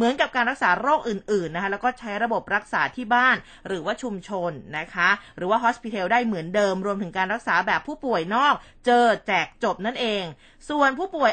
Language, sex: Thai, female